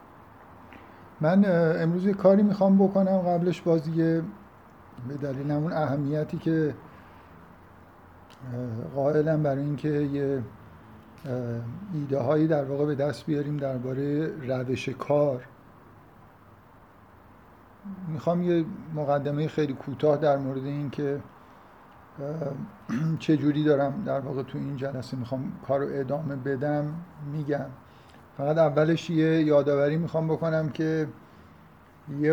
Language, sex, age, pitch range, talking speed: Persian, male, 50-69, 130-155 Hz, 100 wpm